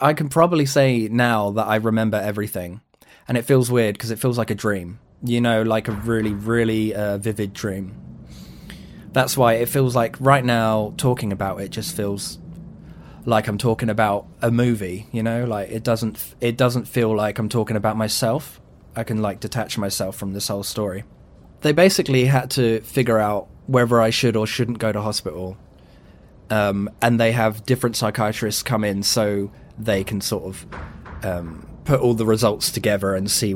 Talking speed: 185 wpm